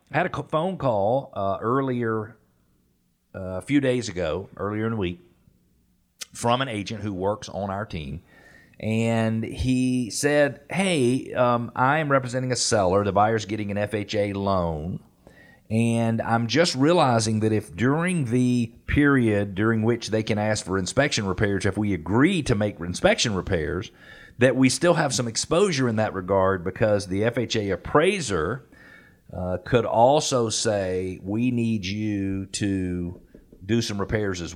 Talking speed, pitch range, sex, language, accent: 155 wpm, 100-125 Hz, male, English, American